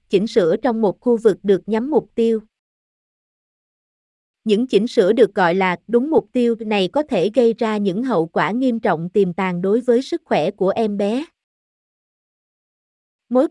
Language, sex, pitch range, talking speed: Vietnamese, female, 200-250 Hz, 175 wpm